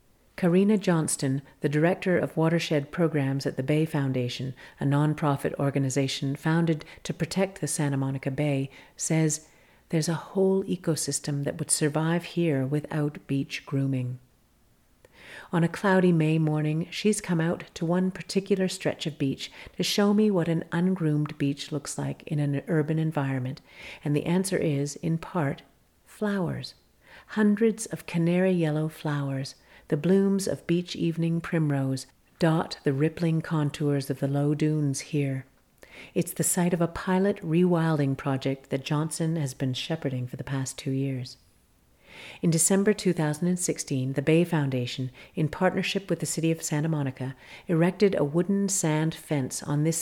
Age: 50-69